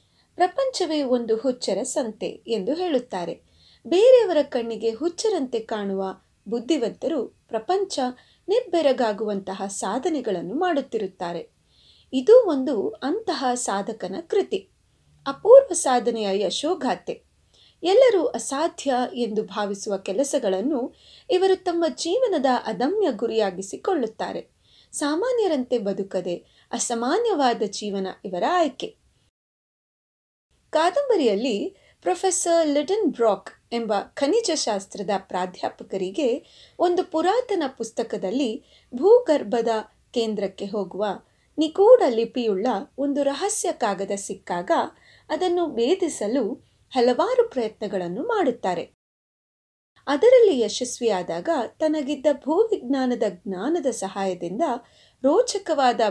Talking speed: 75 wpm